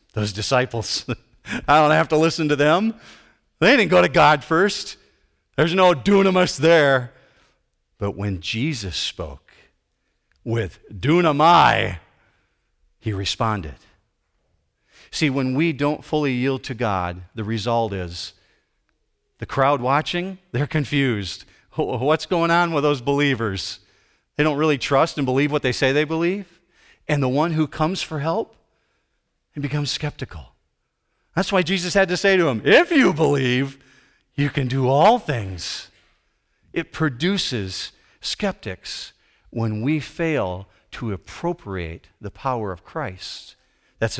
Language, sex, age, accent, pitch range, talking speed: English, male, 40-59, American, 100-150 Hz, 135 wpm